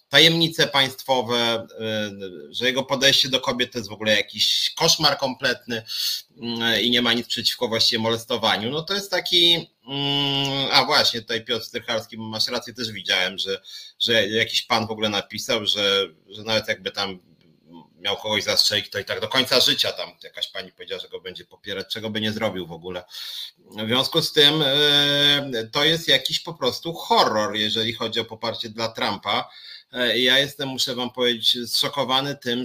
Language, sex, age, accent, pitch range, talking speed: Polish, male, 30-49, native, 115-145 Hz, 170 wpm